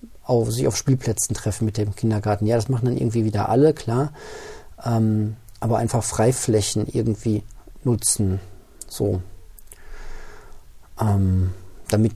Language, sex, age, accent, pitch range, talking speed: German, male, 40-59, German, 105-120 Hz, 125 wpm